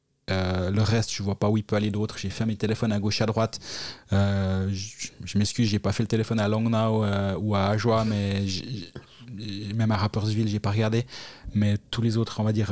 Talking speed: 250 wpm